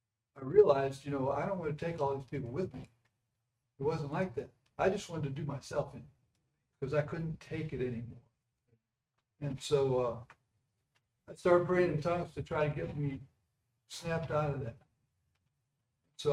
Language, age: English, 60-79